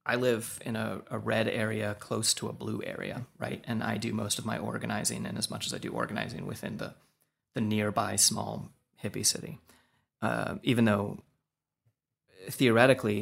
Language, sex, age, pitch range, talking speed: English, male, 30-49, 105-125 Hz, 170 wpm